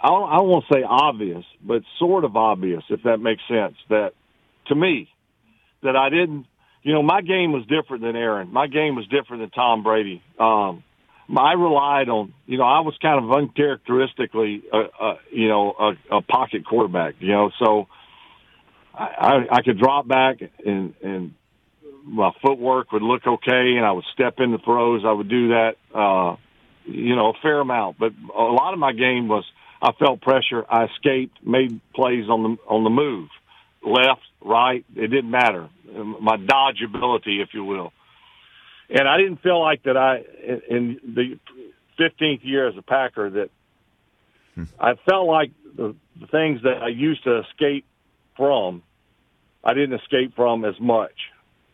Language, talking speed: English, 170 wpm